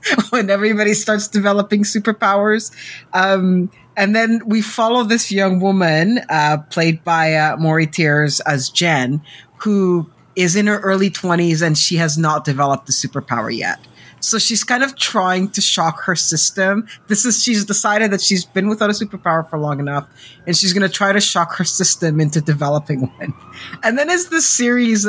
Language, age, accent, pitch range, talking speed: English, 30-49, American, 155-205 Hz, 175 wpm